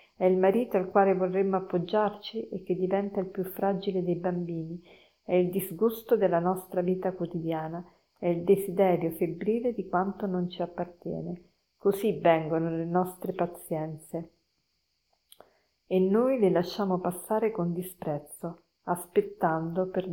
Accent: native